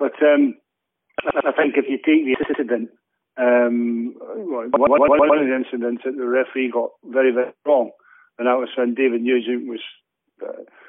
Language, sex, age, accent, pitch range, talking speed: English, male, 40-59, British, 125-150 Hz, 165 wpm